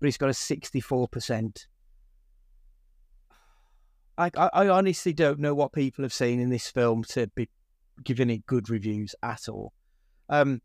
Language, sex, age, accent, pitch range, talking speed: English, male, 30-49, British, 120-145 Hz, 145 wpm